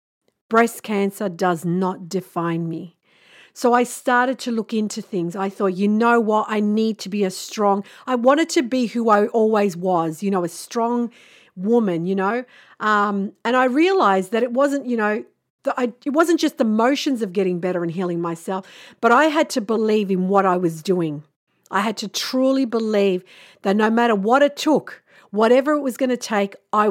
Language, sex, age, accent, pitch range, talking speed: English, female, 50-69, Australian, 195-245 Hz, 200 wpm